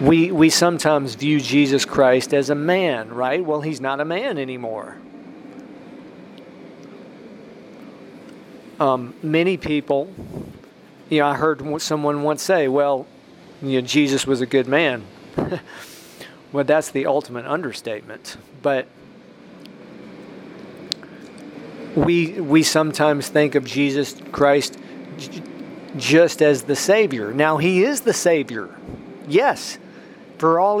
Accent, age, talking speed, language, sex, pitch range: American, 40-59, 115 wpm, English, male, 140-175 Hz